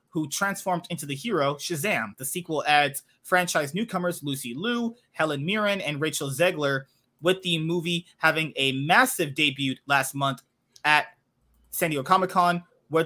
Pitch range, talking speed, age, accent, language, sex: 140-175 Hz, 145 wpm, 30-49, American, English, male